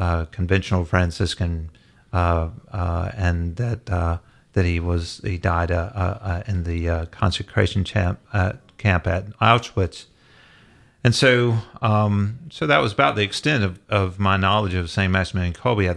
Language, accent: English, American